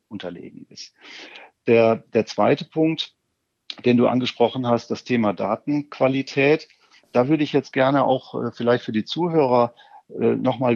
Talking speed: 145 wpm